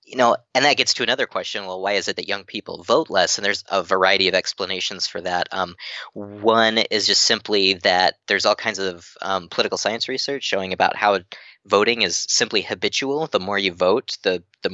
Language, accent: English, American